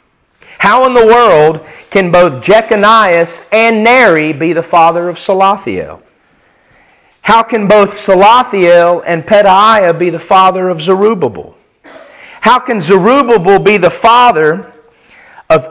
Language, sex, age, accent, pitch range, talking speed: English, male, 40-59, American, 165-220 Hz, 120 wpm